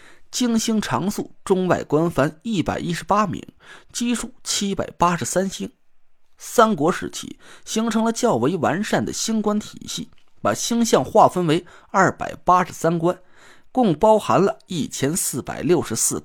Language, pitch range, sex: Chinese, 155-210 Hz, male